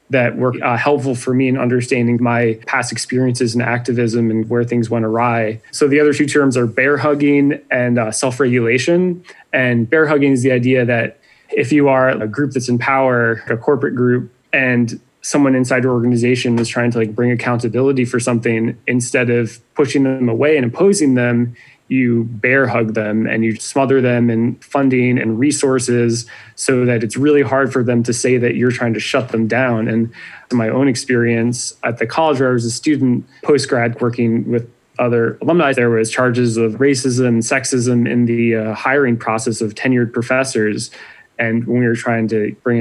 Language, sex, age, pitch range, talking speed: English, male, 20-39, 115-130 Hz, 190 wpm